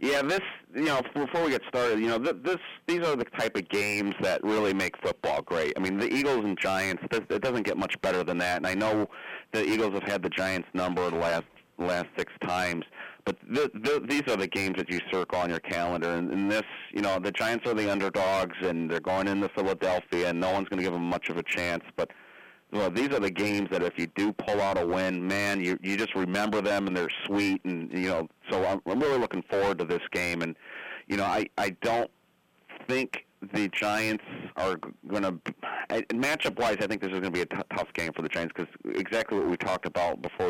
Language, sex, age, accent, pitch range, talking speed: English, male, 40-59, American, 90-105 Hz, 235 wpm